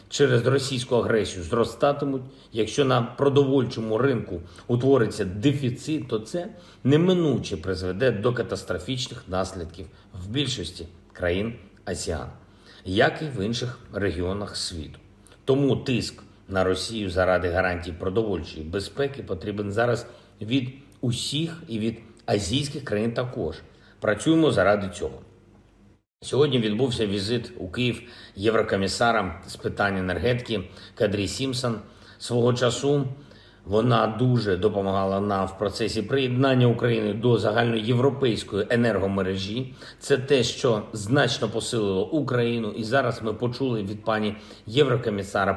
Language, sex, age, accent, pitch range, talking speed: Ukrainian, male, 50-69, native, 100-130 Hz, 110 wpm